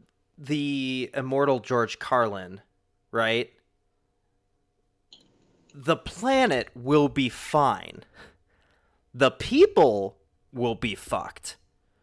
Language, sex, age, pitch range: English, male, 30-49, 110-140 Hz